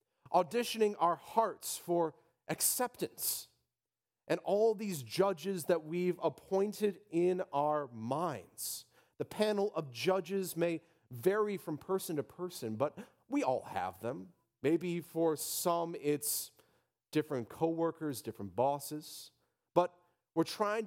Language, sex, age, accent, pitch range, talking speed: English, male, 40-59, American, 120-175 Hz, 120 wpm